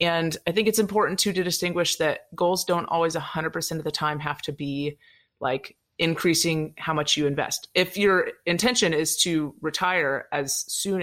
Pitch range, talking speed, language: 150-175 Hz, 180 wpm, English